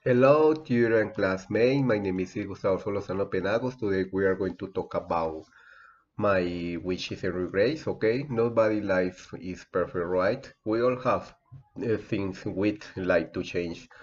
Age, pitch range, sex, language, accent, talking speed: 30-49, 90-110 Hz, male, English, Spanish, 155 wpm